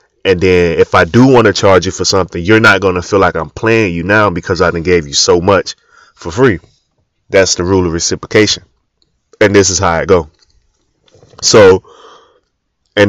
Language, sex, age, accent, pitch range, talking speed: English, male, 20-39, American, 90-125 Hz, 195 wpm